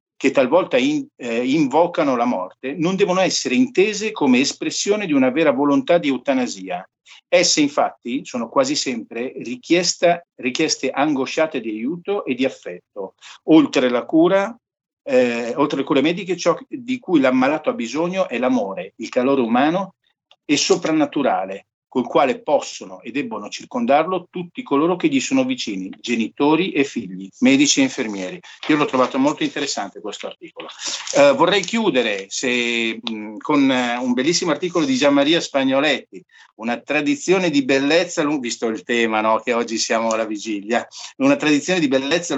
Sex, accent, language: male, native, Italian